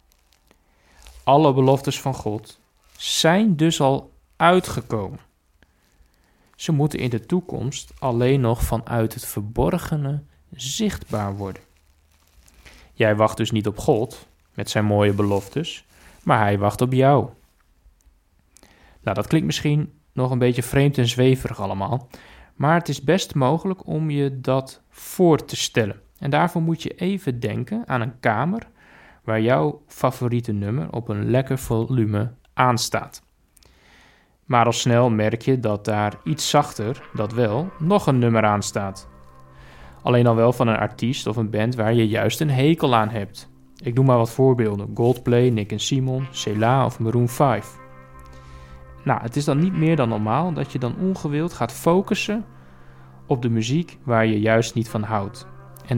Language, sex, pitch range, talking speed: Dutch, male, 105-140 Hz, 155 wpm